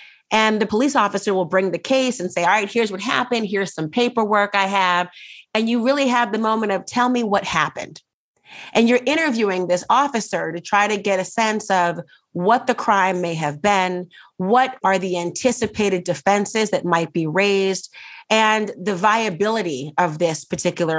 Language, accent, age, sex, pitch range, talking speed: English, American, 30-49, female, 175-215 Hz, 185 wpm